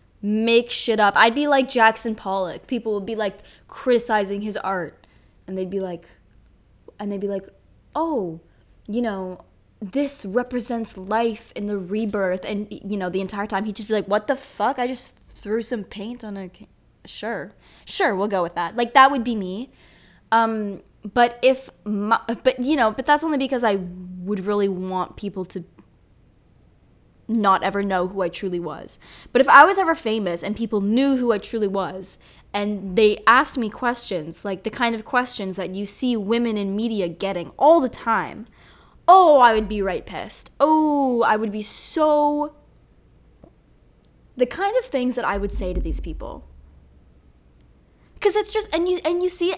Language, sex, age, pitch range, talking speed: English, female, 10-29, 195-250 Hz, 180 wpm